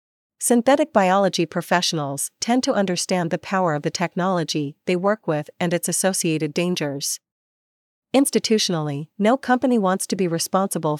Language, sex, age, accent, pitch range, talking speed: English, female, 40-59, American, 165-200 Hz, 135 wpm